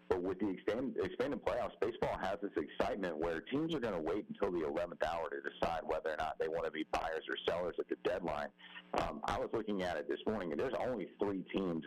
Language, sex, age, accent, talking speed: English, male, 50-69, American, 240 wpm